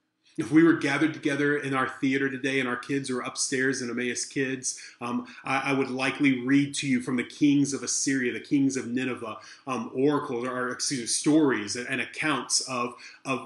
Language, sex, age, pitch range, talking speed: English, male, 30-49, 120-145 Hz, 200 wpm